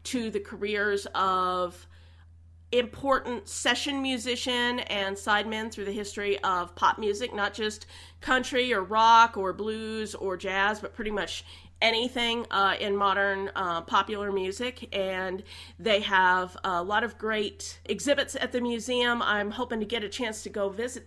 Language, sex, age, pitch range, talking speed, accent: English, female, 40-59, 195-245 Hz, 155 wpm, American